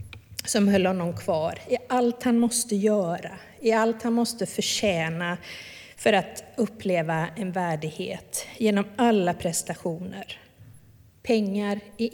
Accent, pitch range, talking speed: native, 165-220 Hz, 120 wpm